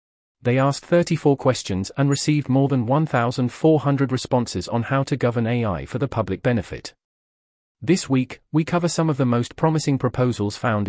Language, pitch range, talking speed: English, 110-140 Hz, 165 wpm